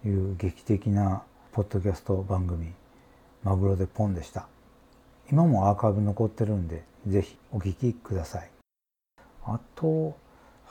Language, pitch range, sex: Japanese, 95-135 Hz, male